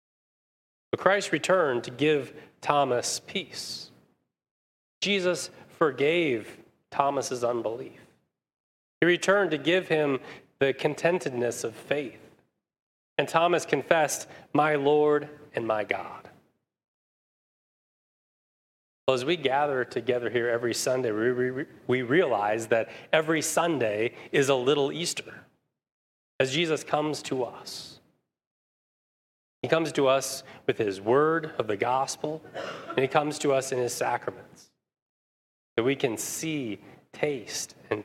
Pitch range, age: 115-155 Hz, 30-49